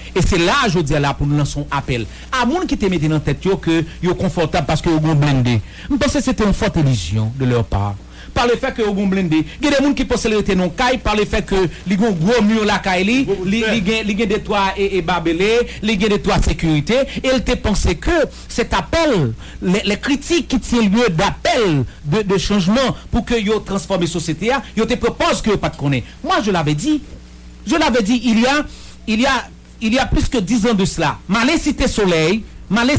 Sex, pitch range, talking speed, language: male, 160-240 Hz, 240 wpm, English